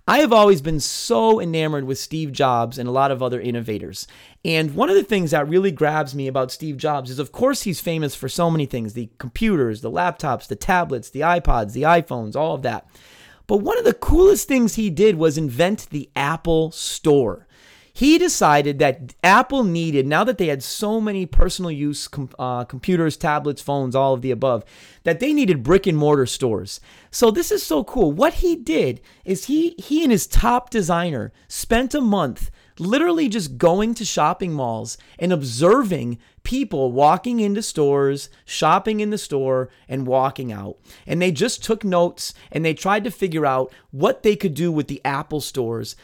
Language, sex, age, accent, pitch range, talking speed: English, male, 30-49, American, 130-200 Hz, 190 wpm